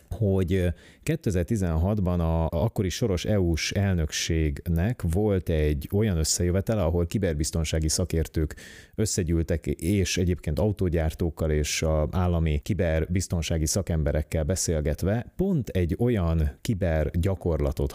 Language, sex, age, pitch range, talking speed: Hungarian, male, 30-49, 75-95 Hz, 95 wpm